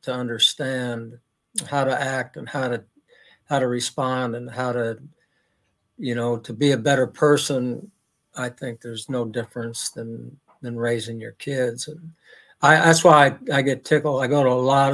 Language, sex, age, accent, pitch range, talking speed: English, male, 60-79, American, 125-175 Hz, 175 wpm